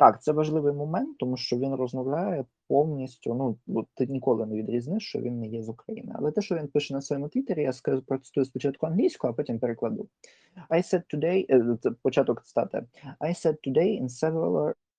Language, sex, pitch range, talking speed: Ukrainian, male, 120-165 Hz, 190 wpm